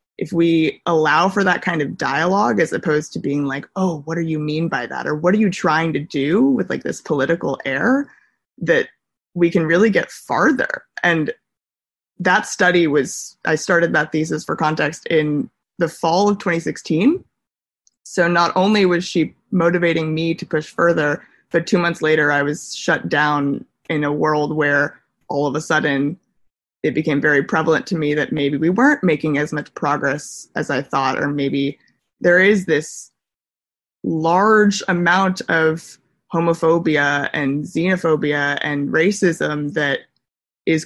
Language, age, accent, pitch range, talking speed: English, 20-39, American, 150-180 Hz, 165 wpm